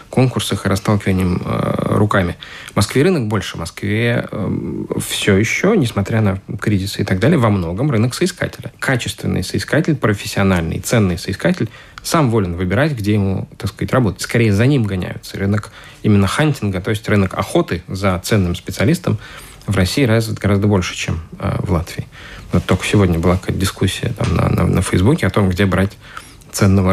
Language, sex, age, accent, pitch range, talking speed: Russian, male, 20-39, native, 95-120 Hz, 165 wpm